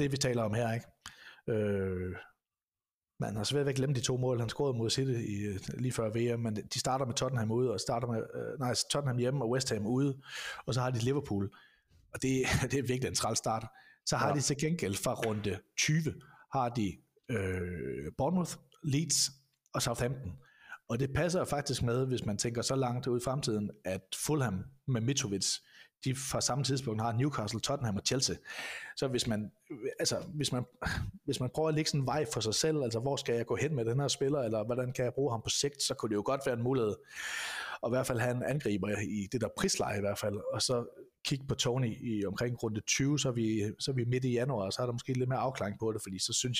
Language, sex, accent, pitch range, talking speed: Danish, male, native, 110-135 Hz, 235 wpm